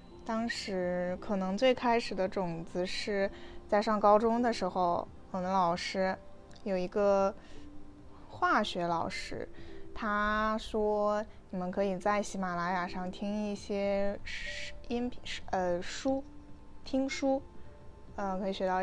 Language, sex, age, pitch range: Chinese, female, 20-39, 180-210 Hz